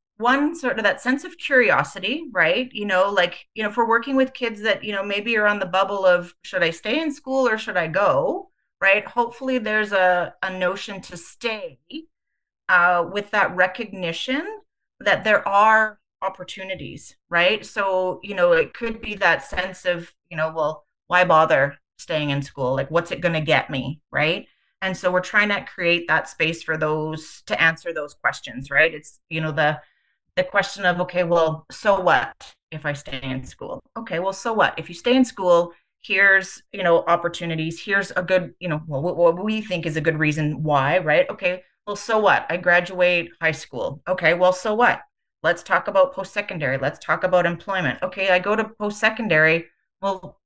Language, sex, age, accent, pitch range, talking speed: English, female, 30-49, American, 165-215 Hz, 190 wpm